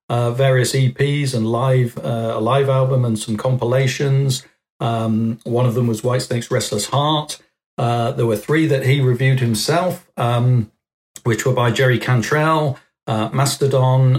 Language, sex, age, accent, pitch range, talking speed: English, male, 50-69, British, 120-140 Hz, 150 wpm